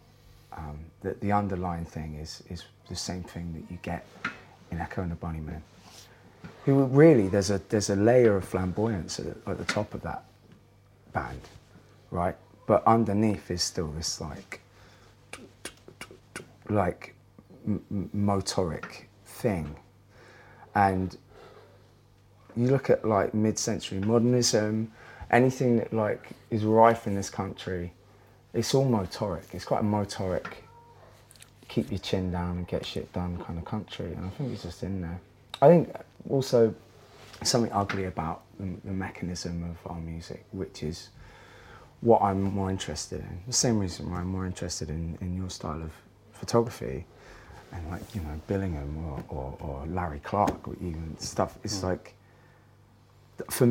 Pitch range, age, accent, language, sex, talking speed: 90-115 Hz, 30-49, British, English, male, 150 wpm